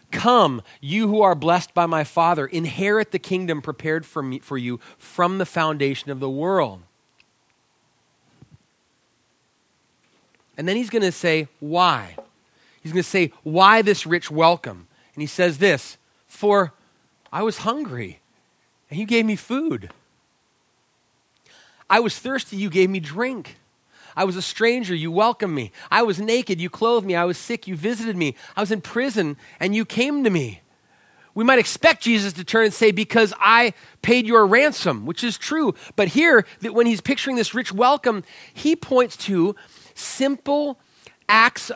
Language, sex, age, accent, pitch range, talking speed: English, male, 30-49, American, 170-230 Hz, 160 wpm